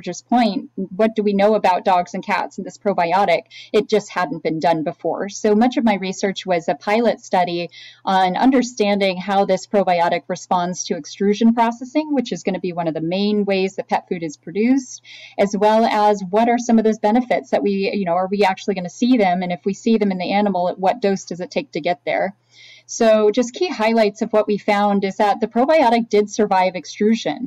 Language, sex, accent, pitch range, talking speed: English, female, American, 185-225 Hz, 225 wpm